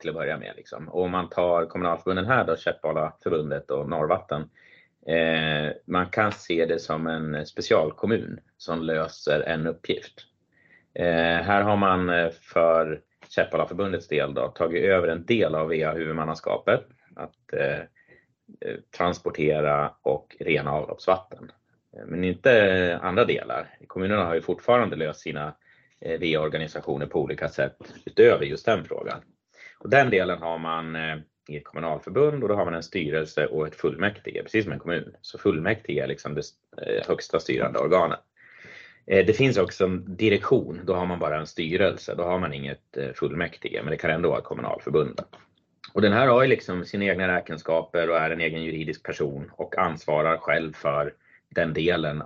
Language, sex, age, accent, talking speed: Swedish, male, 30-49, native, 160 wpm